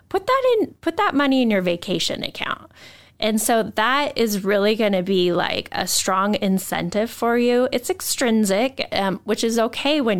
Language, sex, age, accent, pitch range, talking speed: English, female, 10-29, American, 190-255 Hz, 180 wpm